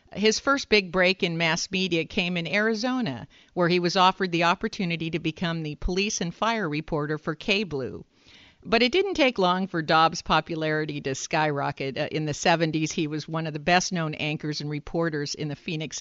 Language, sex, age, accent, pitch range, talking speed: English, female, 50-69, American, 160-210 Hz, 190 wpm